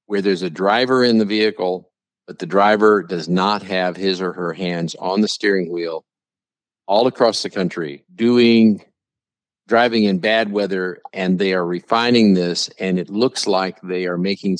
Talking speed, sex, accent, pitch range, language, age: 175 wpm, male, American, 90-115 Hz, English, 50-69